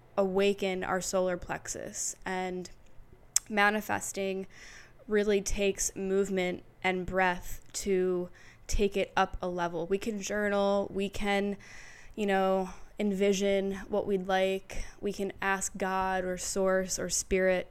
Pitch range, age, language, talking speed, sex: 185-200 Hz, 10-29, English, 120 wpm, female